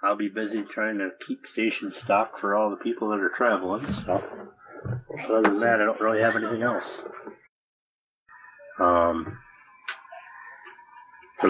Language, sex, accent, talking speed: English, male, American, 140 wpm